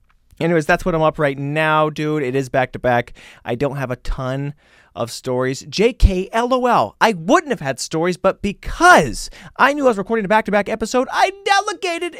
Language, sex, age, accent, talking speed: English, male, 30-49, American, 175 wpm